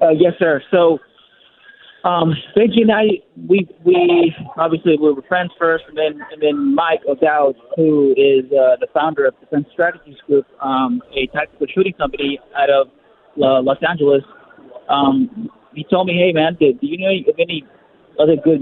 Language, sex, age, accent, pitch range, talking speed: English, male, 30-49, American, 140-190 Hz, 170 wpm